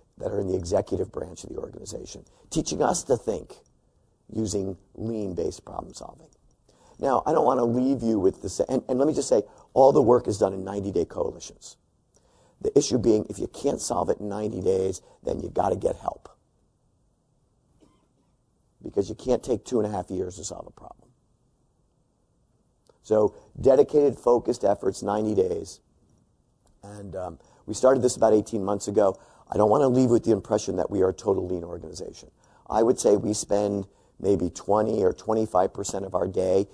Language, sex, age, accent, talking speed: English, male, 50-69, American, 185 wpm